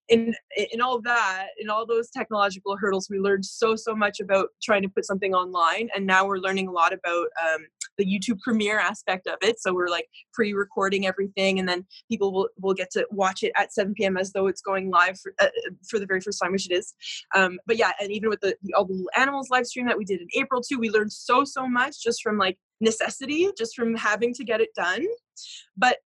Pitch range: 195-240 Hz